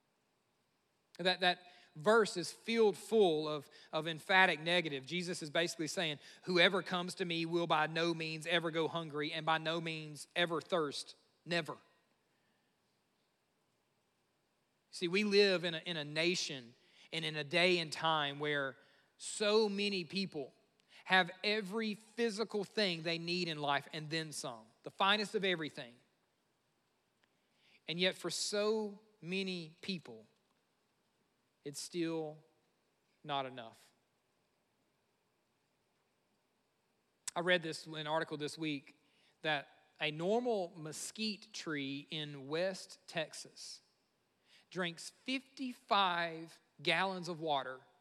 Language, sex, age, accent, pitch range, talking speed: English, male, 40-59, American, 155-190 Hz, 120 wpm